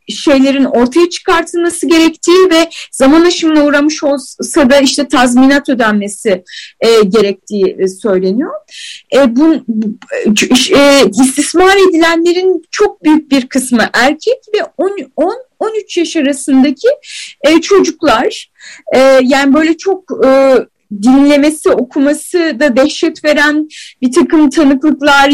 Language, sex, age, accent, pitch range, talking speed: Turkish, female, 30-49, native, 255-330 Hz, 110 wpm